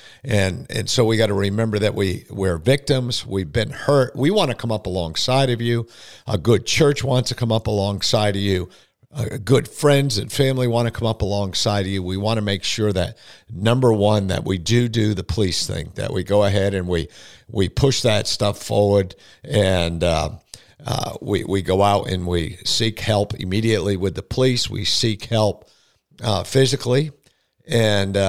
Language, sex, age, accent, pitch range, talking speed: English, male, 50-69, American, 100-120 Hz, 195 wpm